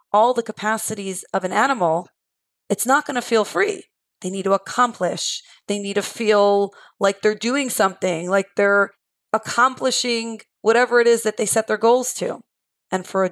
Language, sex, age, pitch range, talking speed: English, female, 30-49, 195-235 Hz, 175 wpm